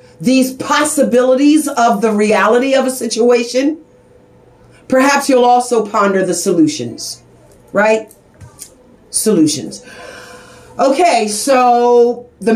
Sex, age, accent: female, 50-69, American